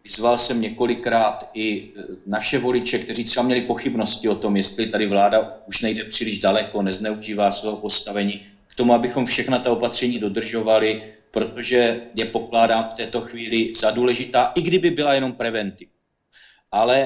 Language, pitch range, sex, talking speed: Czech, 110-135 Hz, male, 150 wpm